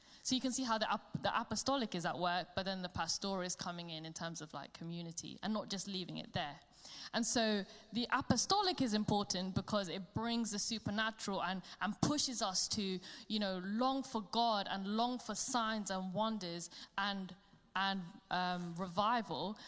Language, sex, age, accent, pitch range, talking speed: English, female, 10-29, British, 185-230 Hz, 185 wpm